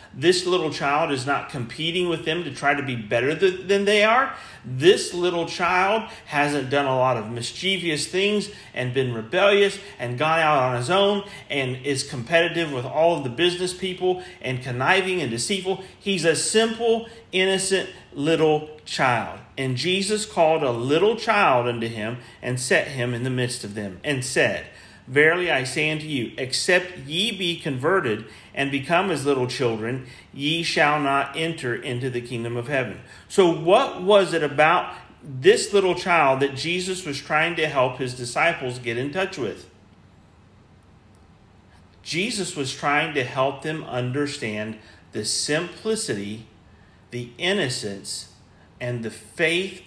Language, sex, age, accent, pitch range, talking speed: English, male, 40-59, American, 115-175 Hz, 155 wpm